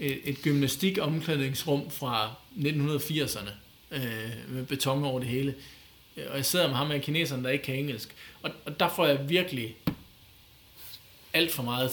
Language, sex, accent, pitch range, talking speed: Danish, male, native, 125-165 Hz, 155 wpm